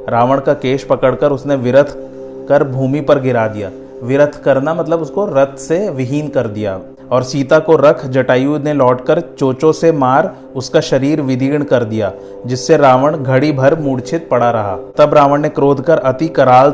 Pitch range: 130-150 Hz